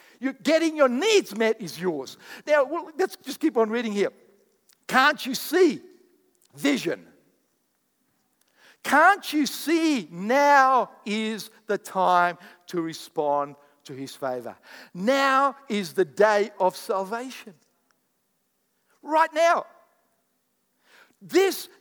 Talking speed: 105 wpm